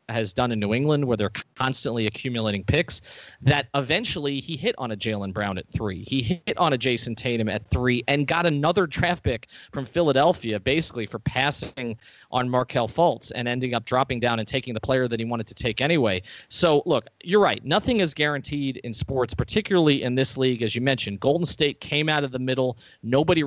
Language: English